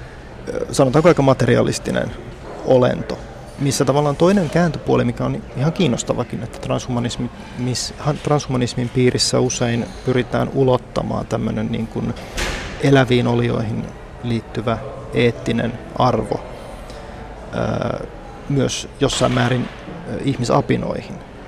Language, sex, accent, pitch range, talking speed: Finnish, male, native, 115-130 Hz, 85 wpm